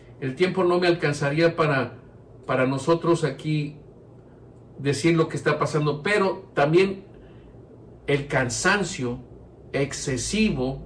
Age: 50-69